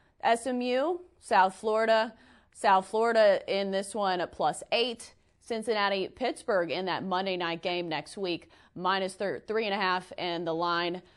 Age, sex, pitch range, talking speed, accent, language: 30-49, female, 175-220 Hz, 155 wpm, American, English